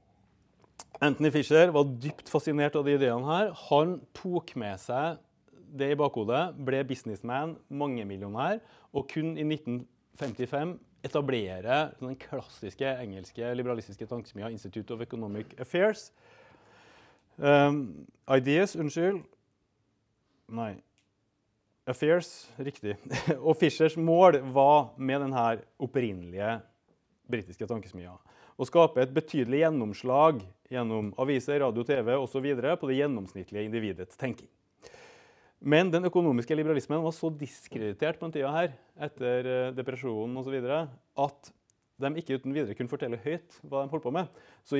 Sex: male